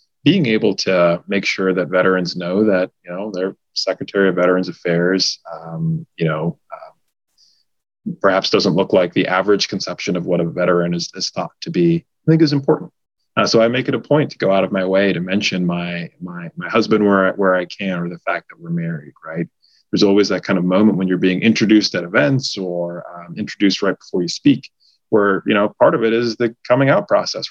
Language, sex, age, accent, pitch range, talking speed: English, male, 20-39, American, 90-110 Hz, 220 wpm